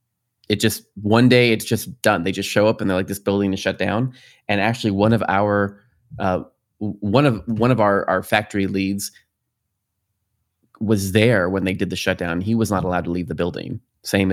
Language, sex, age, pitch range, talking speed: English, male, 20-39, 95-115 Hz, 205 wpm